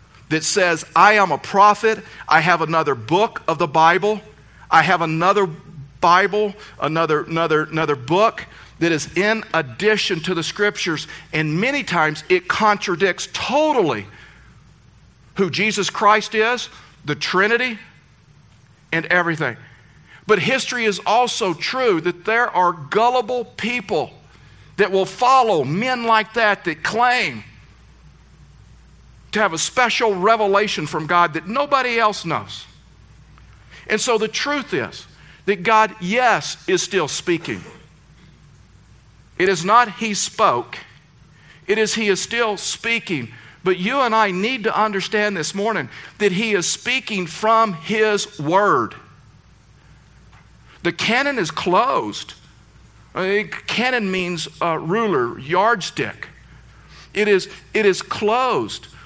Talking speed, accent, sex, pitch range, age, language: 125 wpm, American, male, 155-215 Hz, 50-69, English